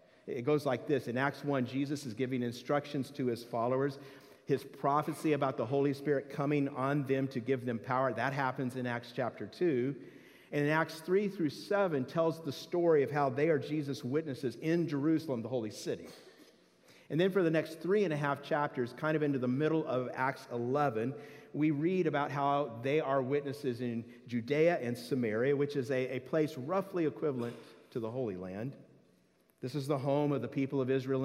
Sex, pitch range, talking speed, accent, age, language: male, 125-150 Hz, 195 wpm, American, 50-69, English